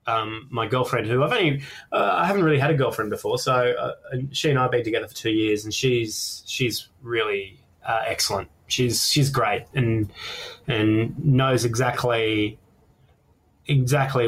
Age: 20-39